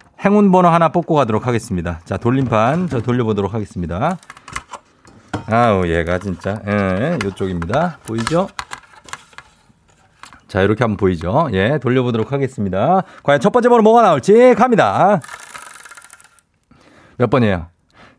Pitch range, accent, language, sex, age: 115-185 Hz, native, Korean, male, 40-59